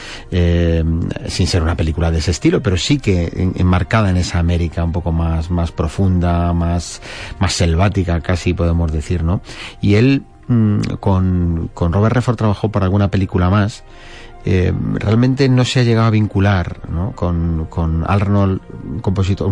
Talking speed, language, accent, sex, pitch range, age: 165 wpm, Spanish, Spanish, male, 90-110 Hz, 30-49